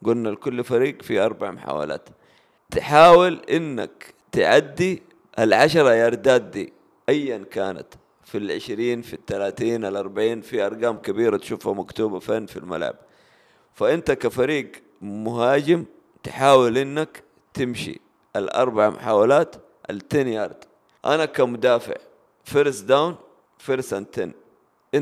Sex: male